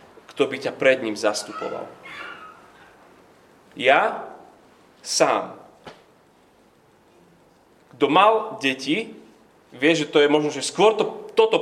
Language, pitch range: Slovak, 145-210 Hz